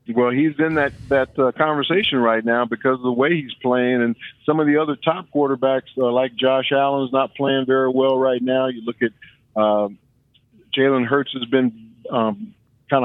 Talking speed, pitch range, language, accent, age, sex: 200 wpm, 120-135 Hz, English, American, 50-69, male